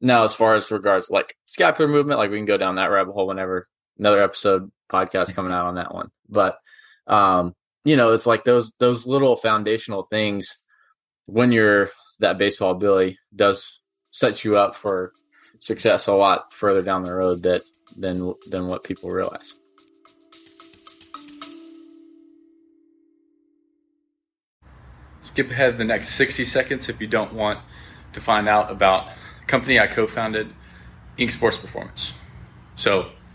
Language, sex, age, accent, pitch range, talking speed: English, male, 20-39, American, 95-125 Hz, 145 wpm